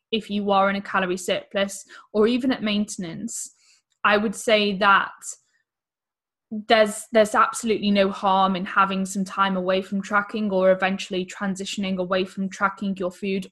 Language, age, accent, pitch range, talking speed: English, 10-29, British, 190-215 Hz, 155 wpm